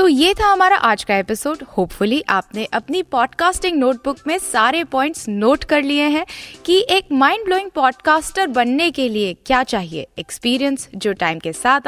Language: Hindi